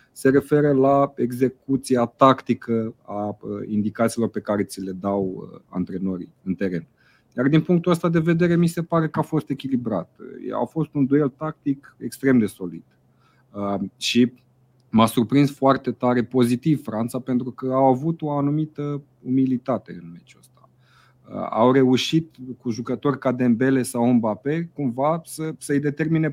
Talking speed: 150 wpm